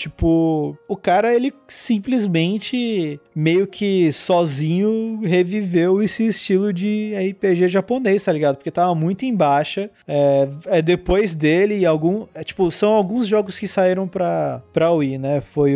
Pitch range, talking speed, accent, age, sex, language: 150-190 Hz, 150 wpm, Brazilian, 20-39, male, Portuguese